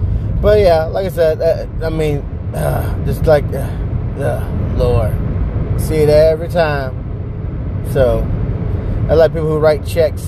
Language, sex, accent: English, male, American